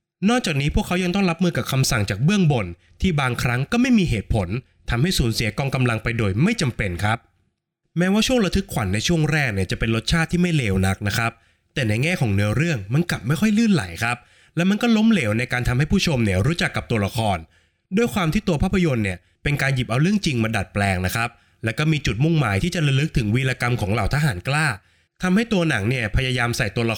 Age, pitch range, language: 20-39, 110-170 Hz, Thai